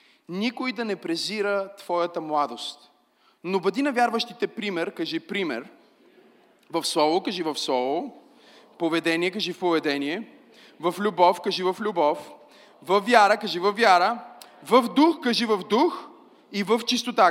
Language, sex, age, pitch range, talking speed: Bulgarian, male, 30-49, 185-250 Hz, 140 wpm